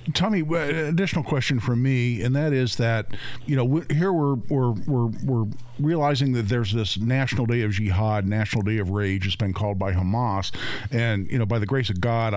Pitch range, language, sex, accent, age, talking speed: 110-135 Hz, English, male, American, 50-69, 200 wpm